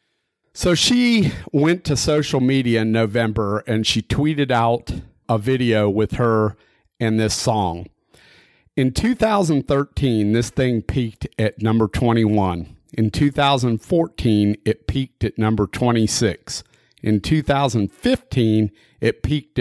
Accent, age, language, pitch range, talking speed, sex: American, 40-59, English, 105-135 Hz, 115 wpm, male